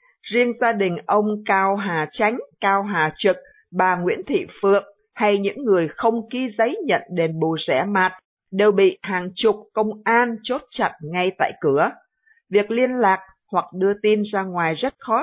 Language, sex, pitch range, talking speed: Vietnamese, female, 190-235 Hz, 180 wpm